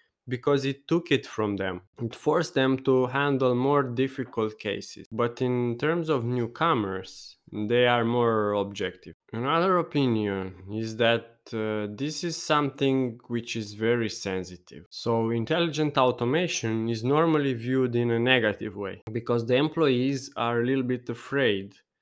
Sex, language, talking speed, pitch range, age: male, English, 145 wpm, 110-130 Hz, 20-39